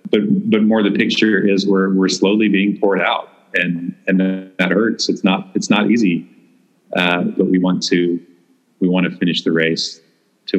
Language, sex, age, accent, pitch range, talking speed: English, male, 30-49, American, 90-100 Hz, 185 wpm